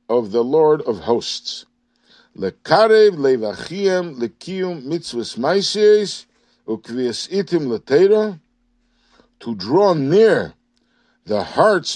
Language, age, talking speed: English, 60-79, 50 wpm